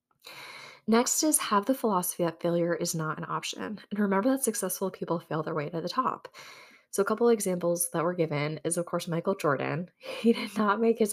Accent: American